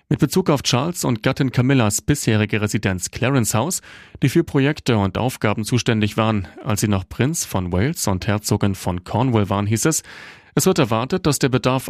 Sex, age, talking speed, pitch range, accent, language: male, 30-49, 185 wpm, 105-130 Hz, German, German